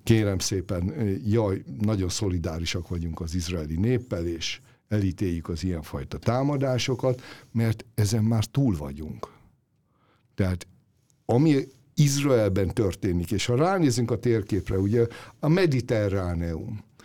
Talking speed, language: 110 wpm, Hungarian